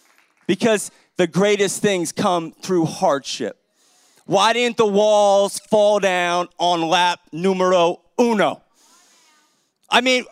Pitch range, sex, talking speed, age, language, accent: 185-245 Hz, male, 110 wpm, 40-59, English, American